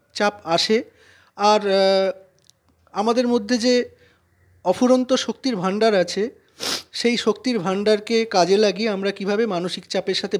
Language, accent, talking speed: Bengali, native, 115 wpm